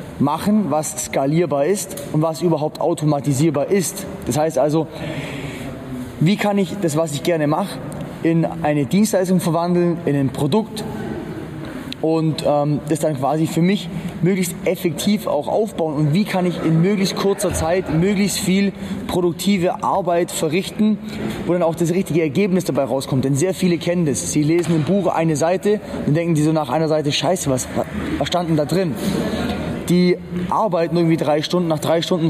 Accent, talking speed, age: German, 165 wpm, 20-39